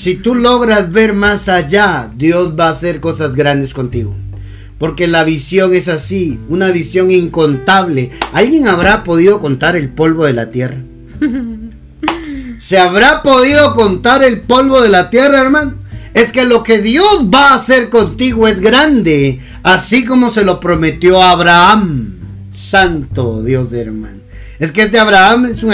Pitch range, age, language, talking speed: 155-225 Hz, 40-59, Spanish, 160 wpm